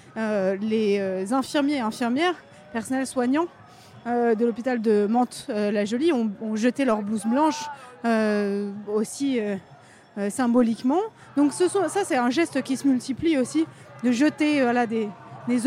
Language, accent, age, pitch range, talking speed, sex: French, French, 30-49, 225-285 Hz, 155 wpm, female